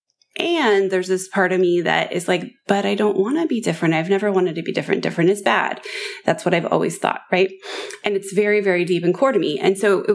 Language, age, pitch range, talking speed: English, 20-39, 170-210 Hz, 255 wpm